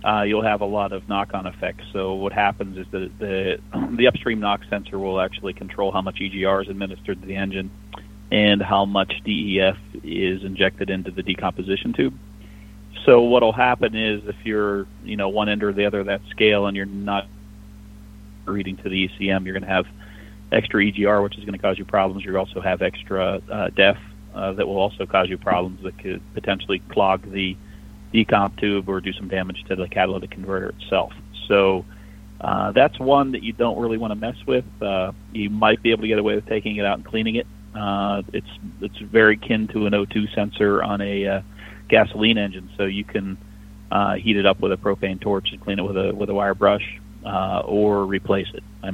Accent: American